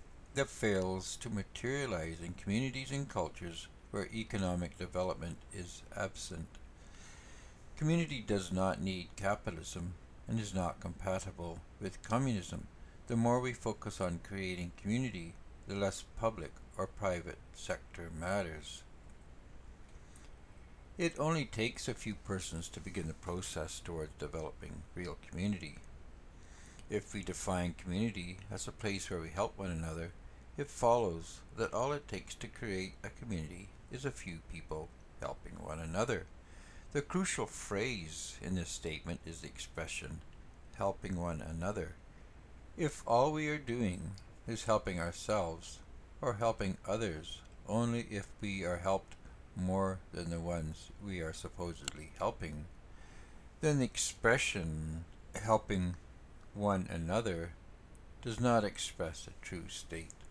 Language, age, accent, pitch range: English, 60-79, American, 80-105 Hz